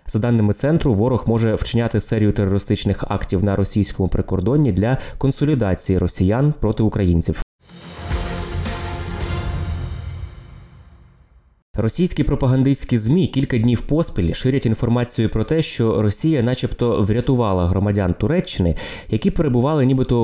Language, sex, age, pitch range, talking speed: Ukrainian, male, 20-39, 95-125 Hz, 105 wpm